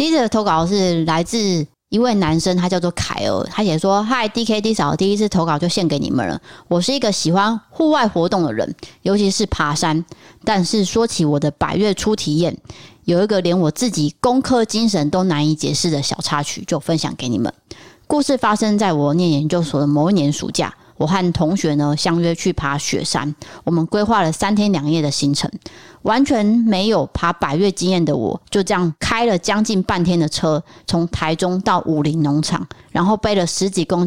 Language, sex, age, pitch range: Chinese, female, 30-49, 160-205 Hz